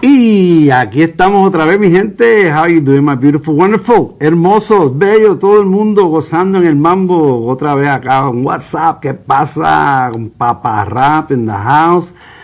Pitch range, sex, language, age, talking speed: 125-175 Hz, male, Spanish, 50-69, 170 wpm